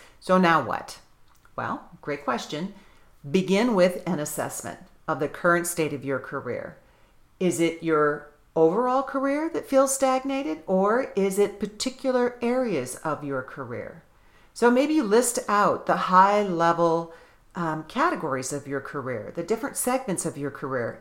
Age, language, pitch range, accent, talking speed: 40-59, English, 150-200 Hz, American, 140 wpm